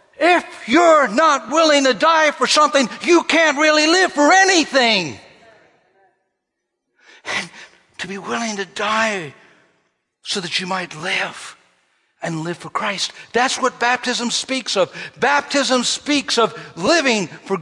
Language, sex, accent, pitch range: English, male, American, 180-255 Hz